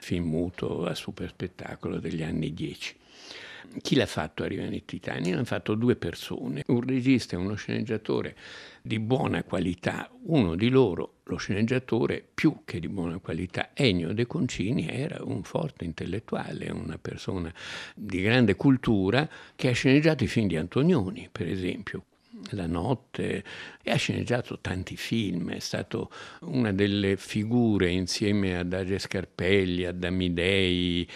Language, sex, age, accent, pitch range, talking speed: Italian, male, 60-79, native, 90-115 Hz, 145 wpm